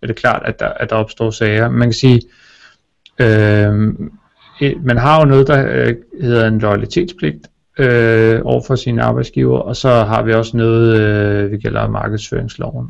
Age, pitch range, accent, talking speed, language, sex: 30-49, 105-120 Hz, native, 165 wpm, Danish, male